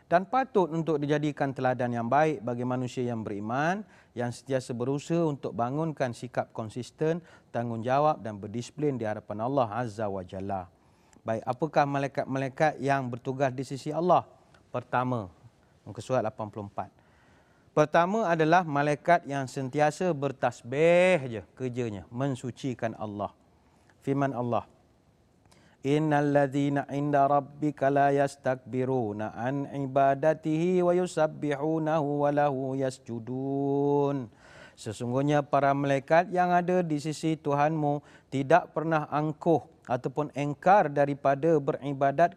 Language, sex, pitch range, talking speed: Malay, male, 125-155 Hz, 110 wpm